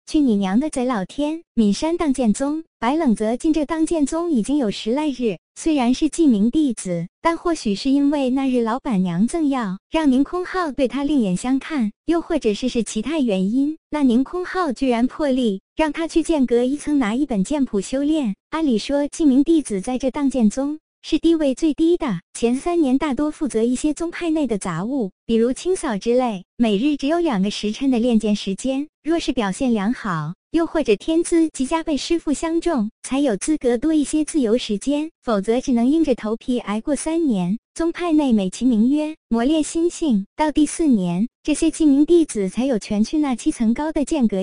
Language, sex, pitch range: Chinese, male, 225-310 Hz